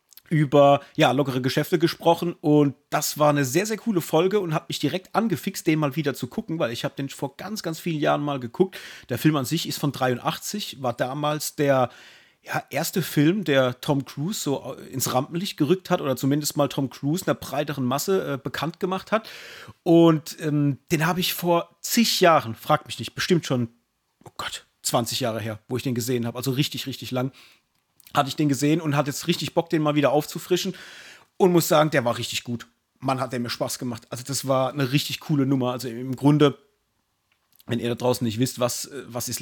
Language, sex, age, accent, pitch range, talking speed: German, male, 30-49, German, 130-165 Hz, 210 wpm